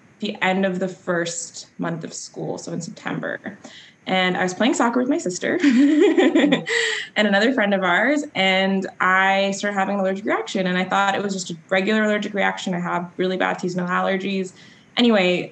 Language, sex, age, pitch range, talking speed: English, female, 20-39, 180-215 Hz, 185 wpm